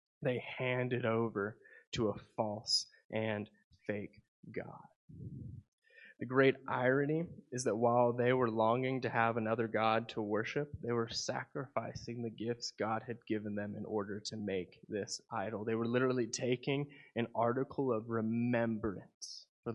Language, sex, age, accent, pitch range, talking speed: English, male, 20-39, American, 115-140 Hz, 150 wpm